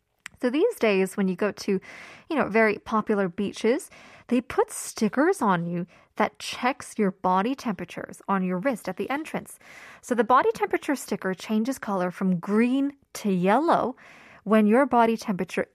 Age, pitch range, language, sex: 20-39, 195-265 Hz, Korean, female